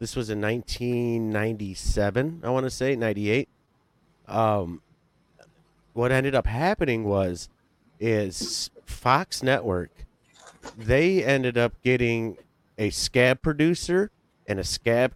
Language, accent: English, American